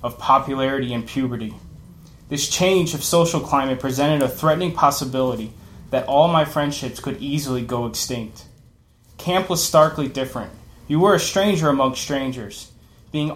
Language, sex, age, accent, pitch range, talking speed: English, male, 20-39, American, 125-160 Hz, 145 wpm